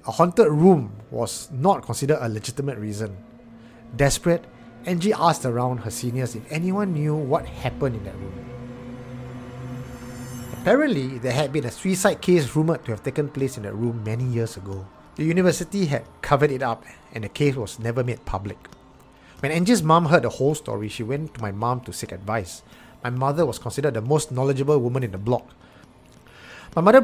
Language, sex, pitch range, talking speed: English, male, 110-145 Hz, 180 wpm